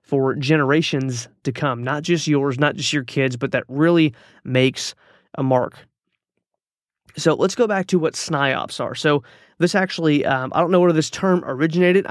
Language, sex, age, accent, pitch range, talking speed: English, male, 30-49, American, 130-150 Hz, 180 wpm